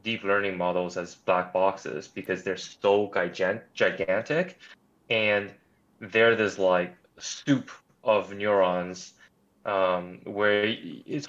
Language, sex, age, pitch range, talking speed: English, male, 20-39, 95-115 Hz, 110 wpm